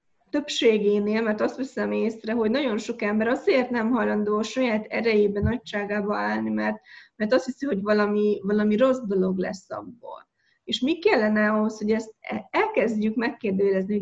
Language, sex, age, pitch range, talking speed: Hungarian, female, 20-39, 205-245 Hz, 150 wpm